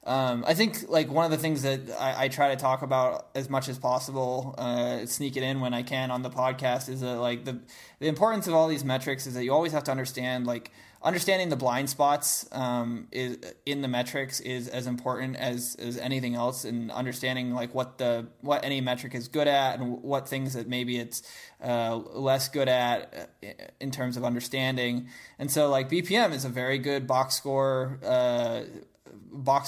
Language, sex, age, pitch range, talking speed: English, male, 20-39, 125-140 Hz, 200 wpm